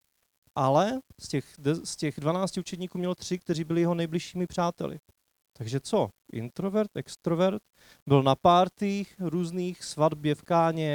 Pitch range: 135-175 Hz